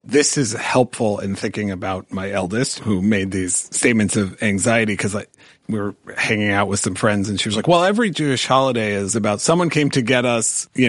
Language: English